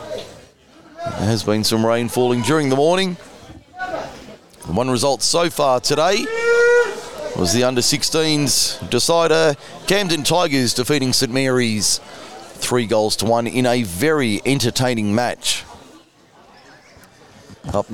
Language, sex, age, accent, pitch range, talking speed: English, male, 30-49, Australian, 115-150 Hz, 110 wpm